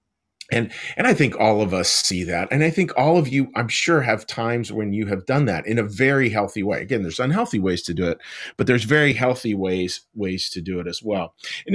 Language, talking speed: English, 245 wpm